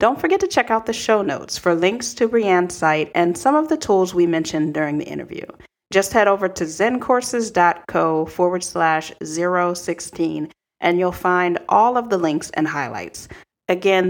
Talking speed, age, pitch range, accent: 175 wpm, 40-59, 170-230 Hz, American